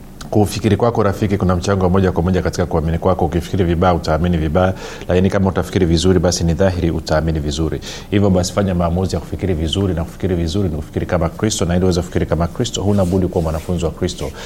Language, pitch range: Swahili, 85-110 Hz